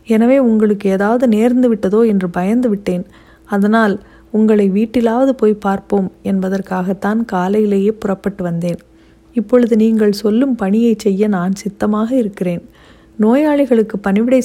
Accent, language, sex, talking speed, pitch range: native, Tamil, female, 110 wpm, 195-230 Hz